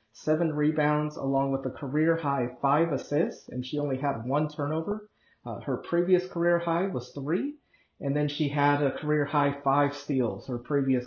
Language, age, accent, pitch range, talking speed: English, 30-49, American, 135-175 Hz, 170 wpm